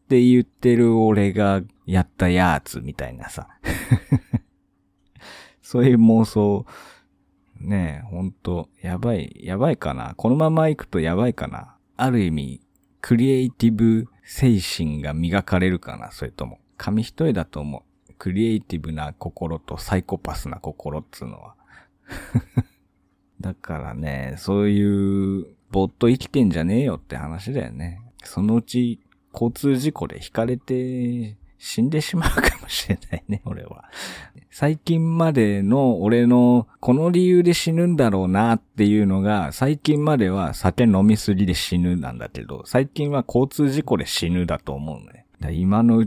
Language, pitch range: Japanese, 85-120 Hz